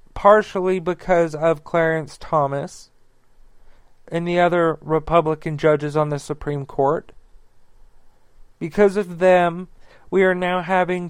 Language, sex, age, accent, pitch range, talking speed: English, male, 40-59, American, 150-175 Hz, 115 wpm